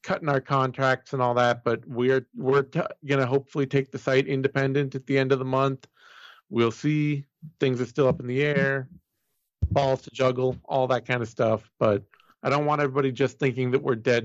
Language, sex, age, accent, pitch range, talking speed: English, male, 40-59, American, 115-145 Hz, 200 wpm